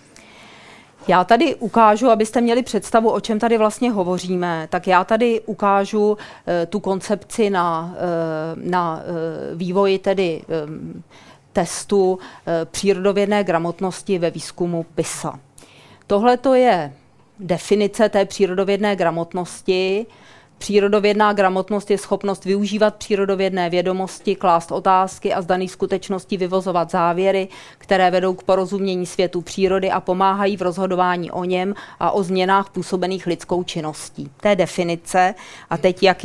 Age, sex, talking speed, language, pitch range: 40-59, female, 115 wpm, Czech, 180-205 Hz